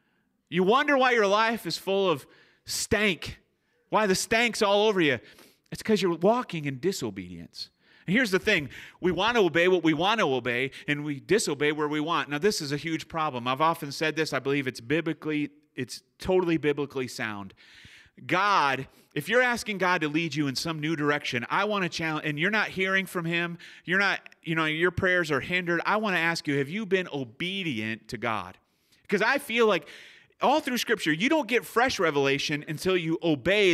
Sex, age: male, 30-49